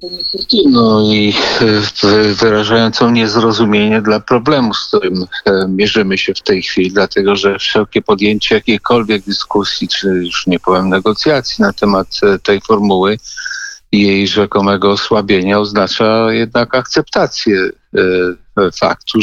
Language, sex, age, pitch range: Polish, male, 50-69, 100-115 Hz